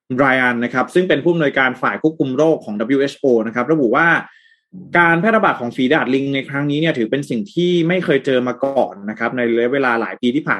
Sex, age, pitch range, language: male, 20-39, 120-155 Hz, Thai